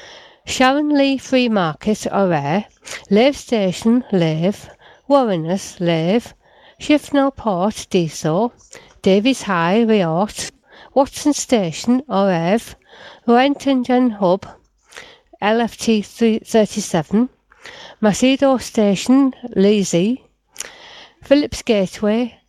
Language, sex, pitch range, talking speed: English, female, 195-265 Hz, 70 wpm